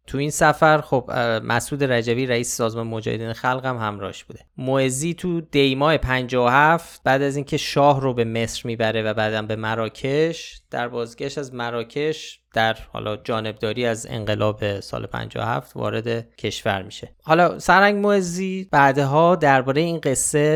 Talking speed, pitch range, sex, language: 150 wpm, 115-150 Hz, male, Persian